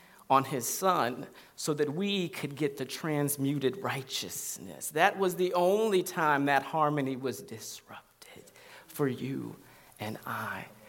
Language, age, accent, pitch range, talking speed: English, 40-59, American, 135-160 Hz, 130 wpm